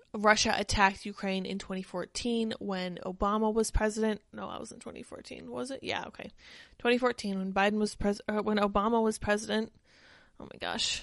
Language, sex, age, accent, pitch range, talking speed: English, female, 20-39, American, 200-240 Hz, 170 wpm